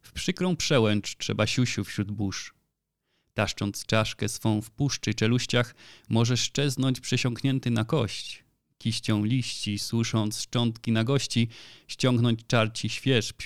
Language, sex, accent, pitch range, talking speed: Polish, male, native, 110-125 Hz, 120 wpm